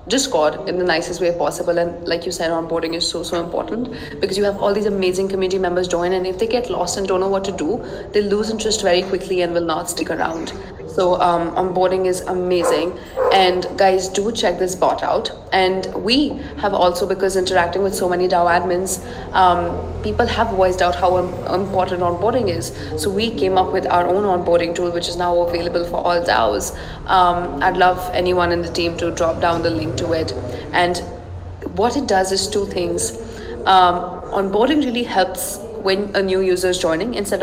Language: English